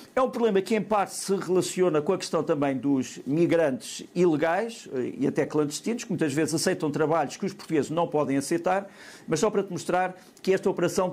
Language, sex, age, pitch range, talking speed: Portuguese, male, 50-69, 150-185 Hz, 200 wpm